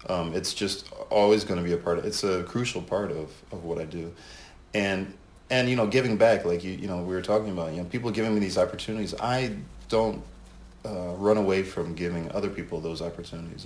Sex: male